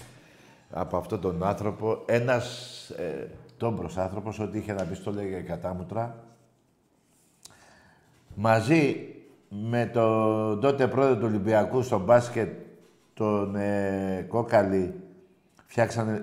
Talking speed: 100 wpm